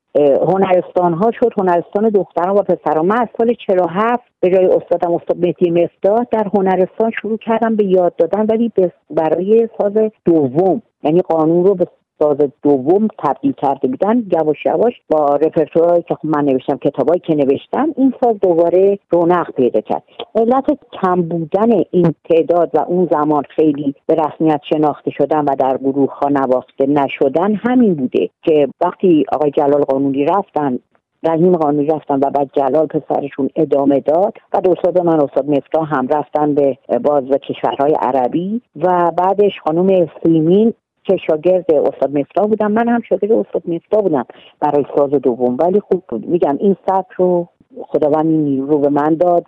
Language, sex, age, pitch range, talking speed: Persian, female, 50-69, 145-195 Hz, 150 wpm